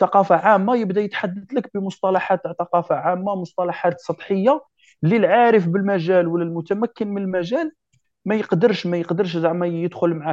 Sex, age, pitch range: male, 30-49, 140-190 Hz